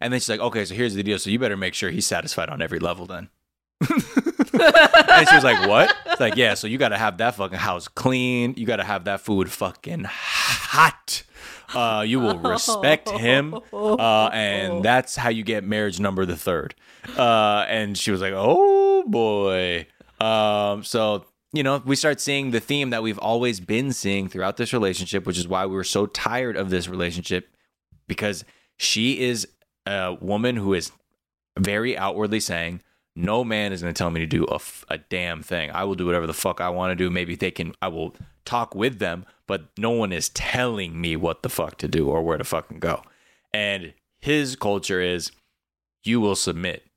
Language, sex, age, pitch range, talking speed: English, male, 20-39, 90-125 Hz, 200 wpm